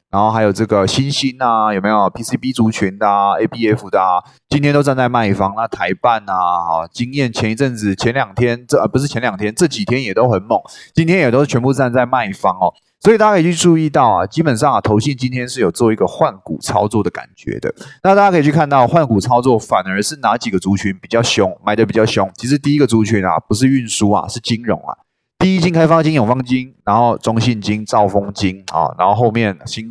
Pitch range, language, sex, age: 105-145 Hz, Chinese, male, 20-39